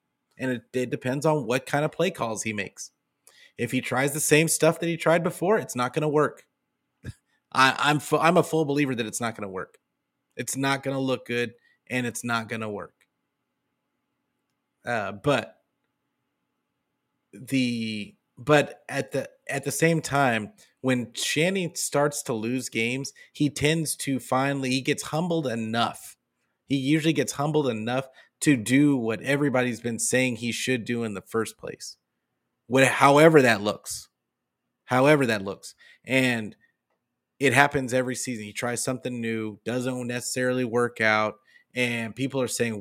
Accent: American